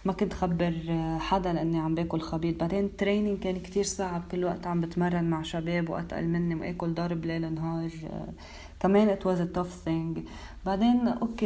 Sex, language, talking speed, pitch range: female, Arabic, 170 wpm, 170-195 Hz